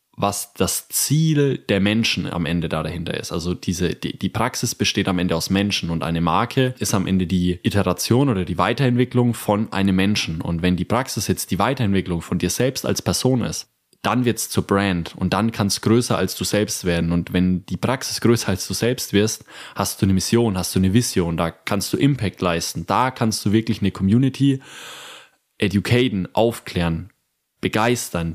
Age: 20-39